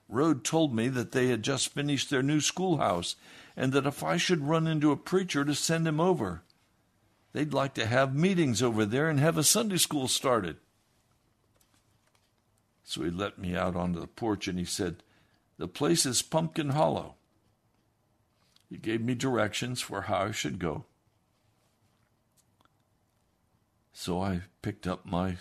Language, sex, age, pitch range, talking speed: English, male, 60-79, 100-130 Hz, 160 wpm